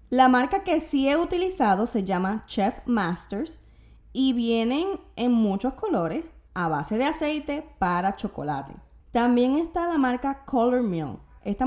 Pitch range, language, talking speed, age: 195-265 Hz, Spanish, 145 wpm, 20-39